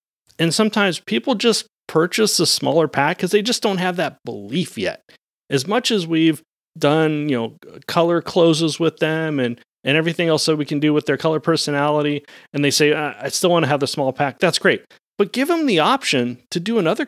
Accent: American